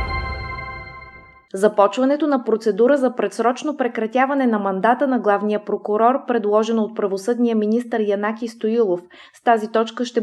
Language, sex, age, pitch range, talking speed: Bulgarian, female, 20-39, 200-245 Hz, 125 wpm